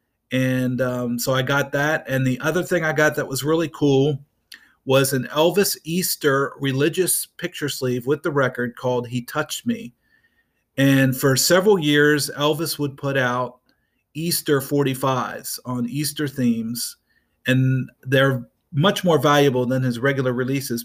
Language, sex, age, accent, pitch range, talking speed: English, male, 40-59, American, 125-150 Hz, 150 wpm